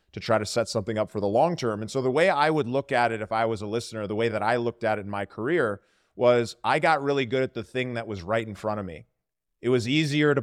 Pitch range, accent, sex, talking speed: 110-125 Hz, American, male, 305 wpm